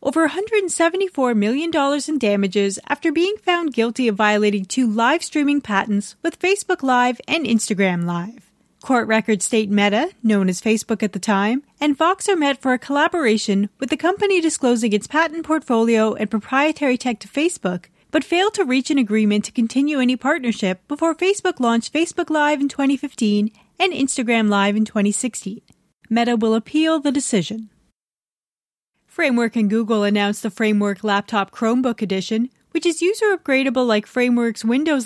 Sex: female